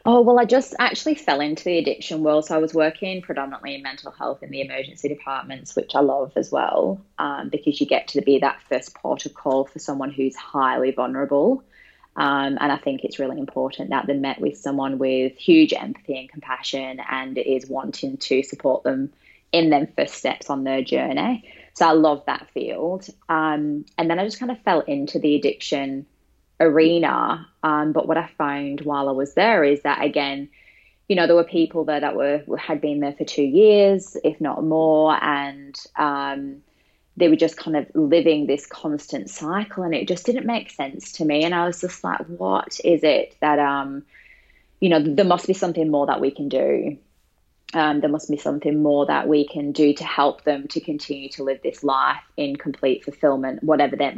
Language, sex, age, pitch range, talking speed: English, female, 20-39, 140-165 Hz, 200 wpm